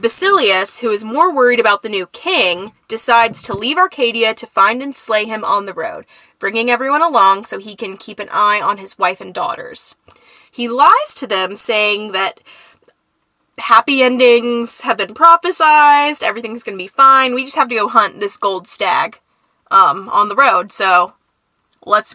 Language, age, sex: English, 20-39, female